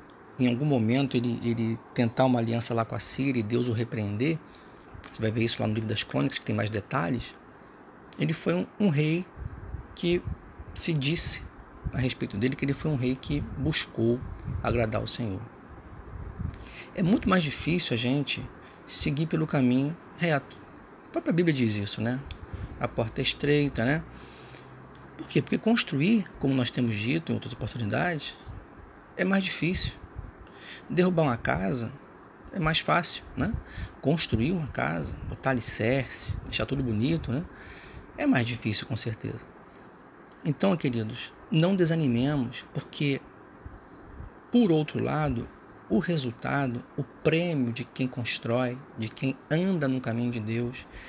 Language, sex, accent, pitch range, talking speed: Portuguese, male, Brazilian, 115-150 Hz, 150 wpm